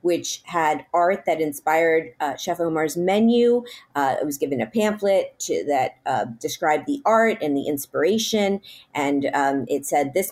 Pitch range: 140-175 Hz